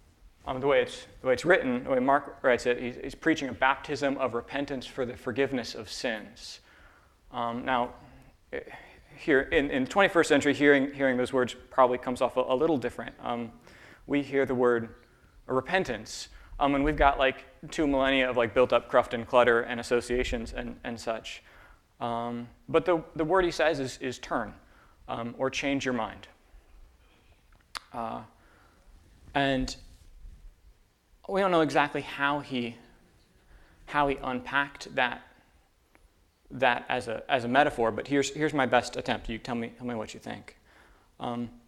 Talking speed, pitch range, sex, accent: 165 wpm, 120-140 Hz, male, American